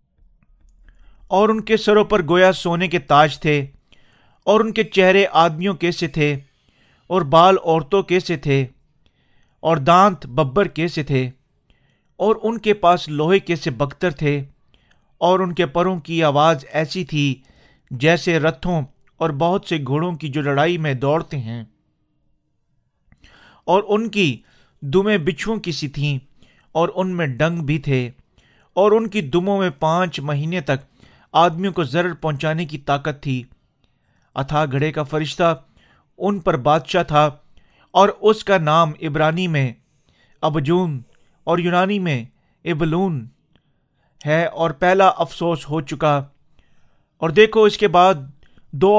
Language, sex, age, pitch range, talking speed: Urdu, male, 40-59, 145-180 Hz, 140 wpm